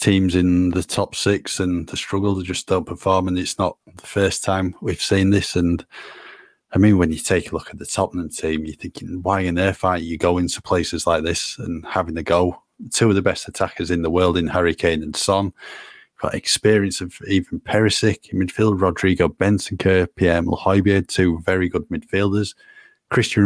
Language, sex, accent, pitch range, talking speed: English, male, British, 90-110 Hz, 200 wpm